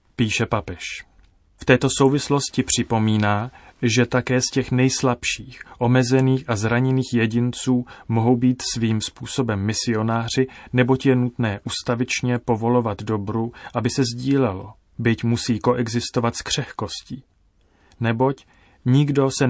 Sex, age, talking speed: male, 30-49, 115 wpm